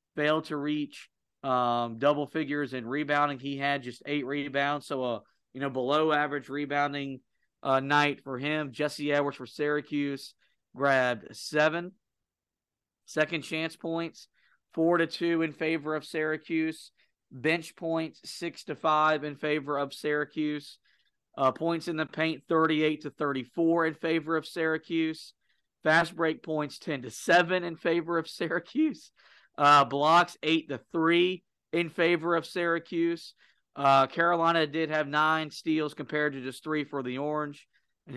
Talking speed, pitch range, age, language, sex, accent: 150 wpm, 140-165 Hz, 40-59, English, male, American